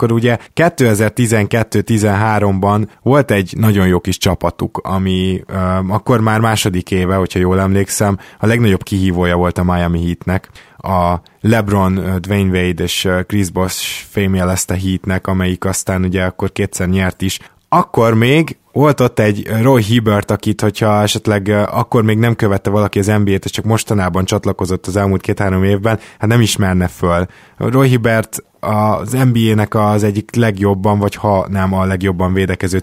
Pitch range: 95-110 Hz